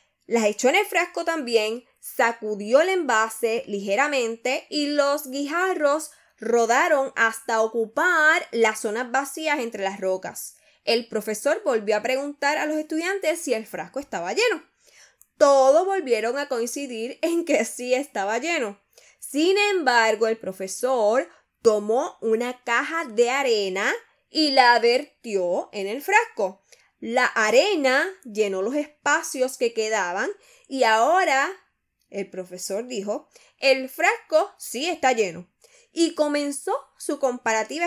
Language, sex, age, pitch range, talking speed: Spanish, female, 10-29, 225-330 Hz, 125 wpm